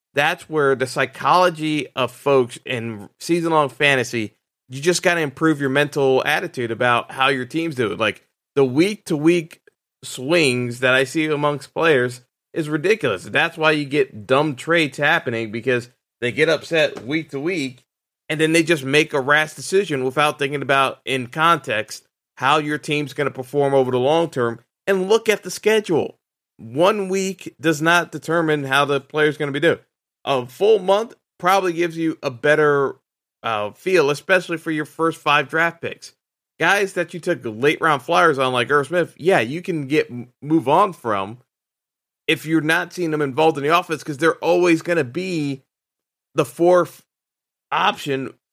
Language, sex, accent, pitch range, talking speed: English, male, American, 135-170 Hz, 170 wpm